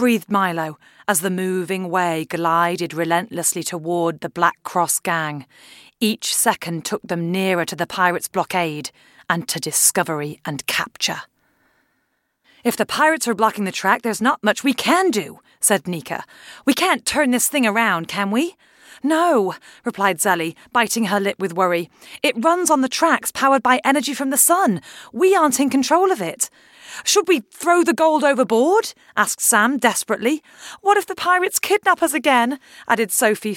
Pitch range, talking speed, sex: 190-310 Hz, 165 wpm, female